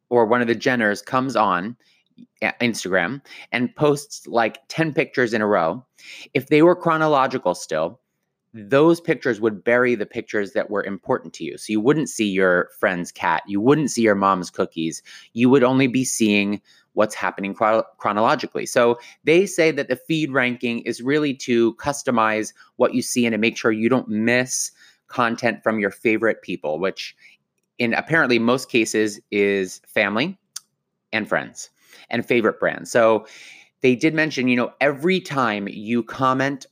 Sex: male